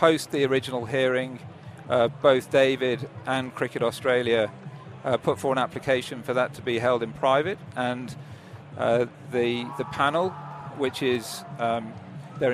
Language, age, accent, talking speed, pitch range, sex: English, 40-59, British, 150 wpm, 120-140 Hz, male